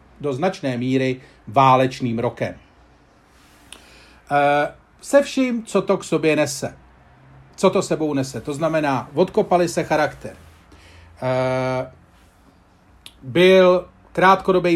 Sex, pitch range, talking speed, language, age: male, 130-170 Hz, 100 wpm, Czech, 40-59